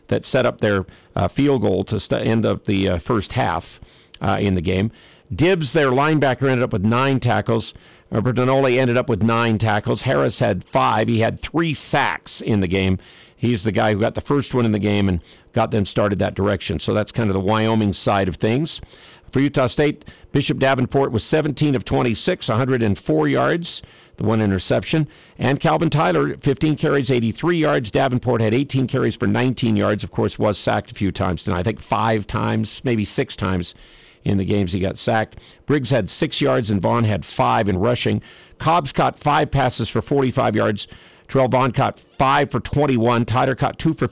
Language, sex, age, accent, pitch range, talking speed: English, male, 50-69, American, 105-135 Hz, 195 wpm